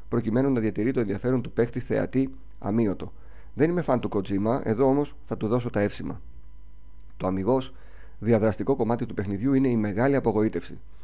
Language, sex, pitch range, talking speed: Greek, male, 100-130 Hz, 170 wpm